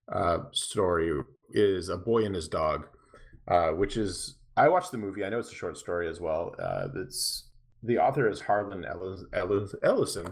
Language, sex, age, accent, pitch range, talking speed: English, male, 30-49, American, 90-120 Hz, 175 wpm